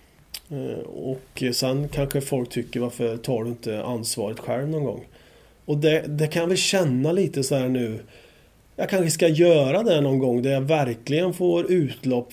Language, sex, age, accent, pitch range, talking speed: English, male, 30-49, Swedish, 125-150 Hz, 175 wpm